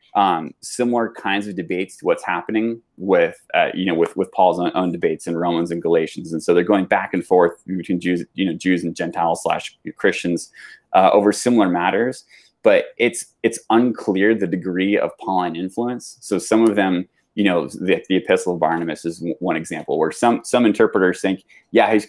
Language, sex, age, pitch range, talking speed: English, male, 20-39, 90-115 Hz, 195 wpm